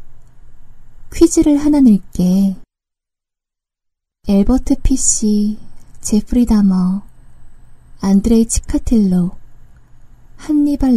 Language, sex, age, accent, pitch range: Korean, female, 20-39, native, 185-270 Hz